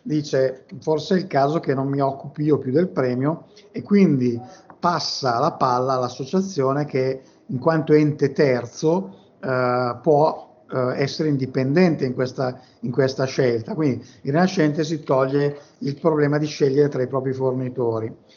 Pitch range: 130-150 Hz